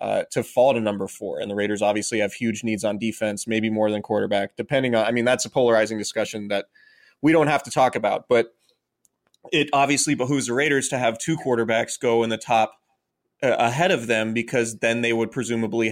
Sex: male